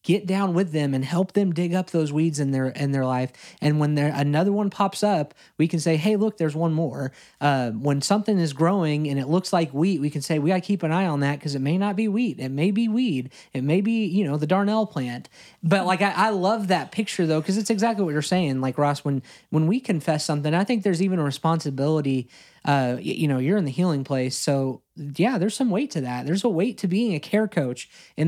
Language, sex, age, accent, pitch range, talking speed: English, male, 20-39, American, 140-190 Hz, 255 wpm